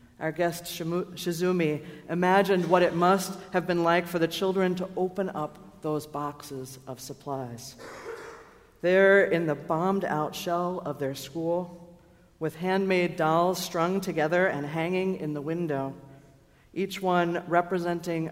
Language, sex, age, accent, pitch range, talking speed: English, female, 50-69, American, 135-185 Hz, 135 wpm